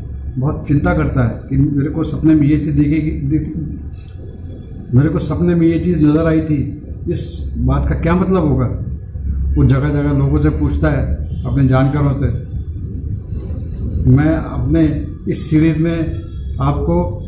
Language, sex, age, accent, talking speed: Hindi, male, 50-69, native, 150 wpm